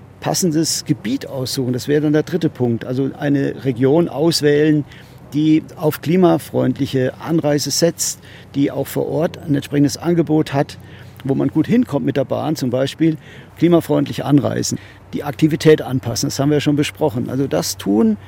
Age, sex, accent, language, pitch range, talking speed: 50-69, male, German, German, 130-155 Hz, 160 wpm